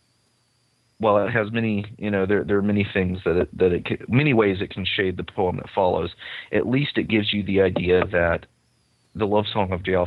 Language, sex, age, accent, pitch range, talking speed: English, male, 30-49, American, 85-105 Hz, 225 wpm